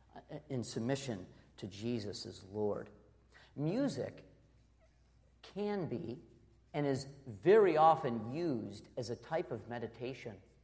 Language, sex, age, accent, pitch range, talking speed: English, male, 50-69, American, 115-155 Hz, 105 wpm